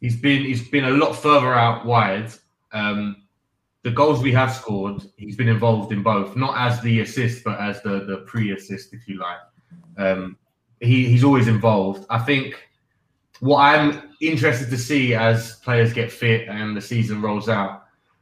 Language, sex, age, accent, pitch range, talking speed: English, male, 20-39, British, 105-125 Hz, 175 wpm